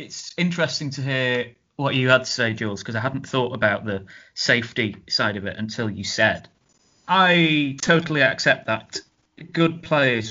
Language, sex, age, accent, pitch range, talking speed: English, male, 30-49, British, 110-150 Hz, 170 wpm